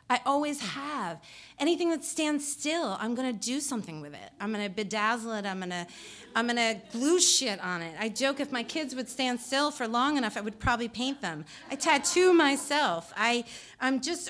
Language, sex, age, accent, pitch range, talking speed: English, female, 30-49, American, 210-295 Hz, 195 wpm